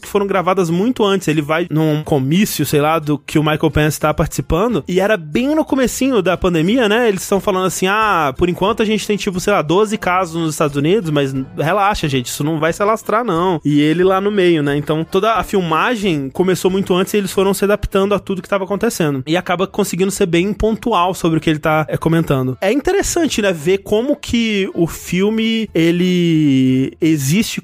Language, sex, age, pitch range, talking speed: Portuguese, male, 20-39, 160-215 Hz, 215 wpm